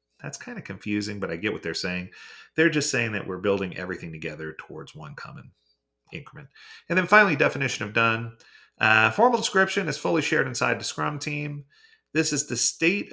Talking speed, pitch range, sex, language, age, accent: 190 wpm, 100-160 Hz, male, English, 30-49, American